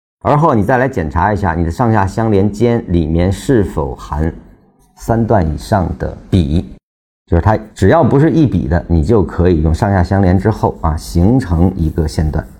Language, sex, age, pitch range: Chinese, male, 50-69, 85-110 Hz